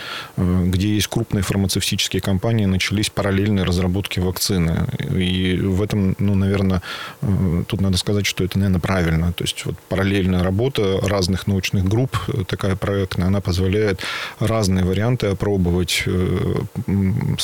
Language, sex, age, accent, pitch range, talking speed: Russian, male, 20-39, native, 95-105 Hz, 125 wpm